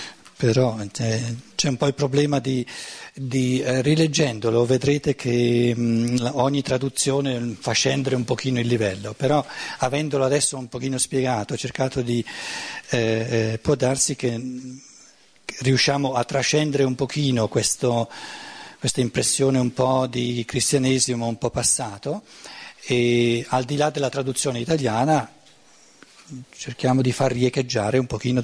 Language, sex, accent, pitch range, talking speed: Italian, male, native, 115-135 Hz, 125 wpm